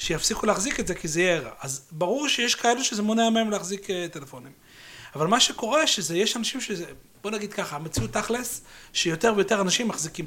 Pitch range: 150-210 Hz